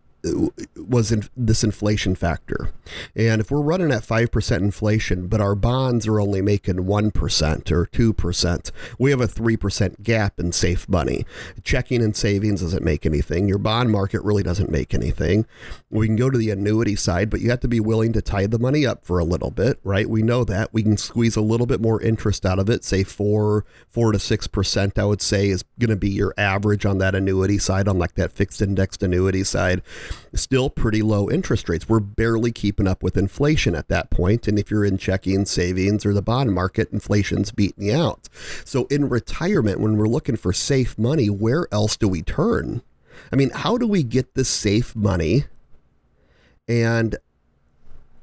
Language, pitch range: English, 95-125 Hz